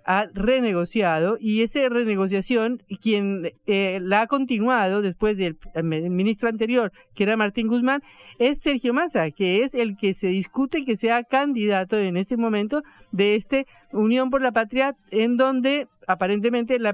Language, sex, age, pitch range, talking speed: Spanish, female, 50-69, 185-245 Hz, 150 wpm